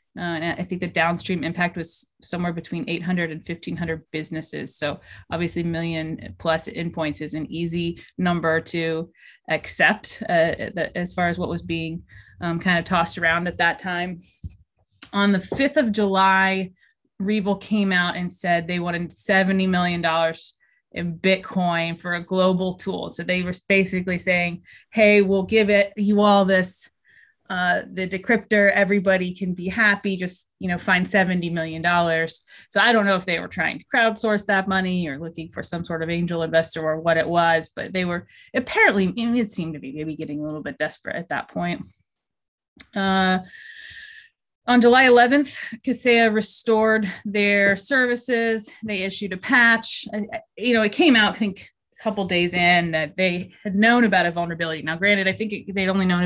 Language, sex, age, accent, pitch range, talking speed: English, female, 20-39, American, 170-210 Hz, 180 wpm